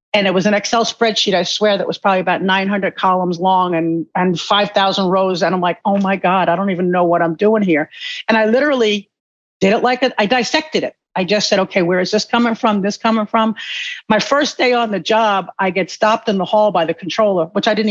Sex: female